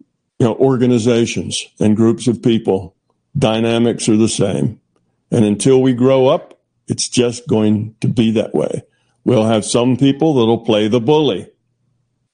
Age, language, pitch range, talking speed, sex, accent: 50-69, English, 110-135 Hz, 150 wpm, male, American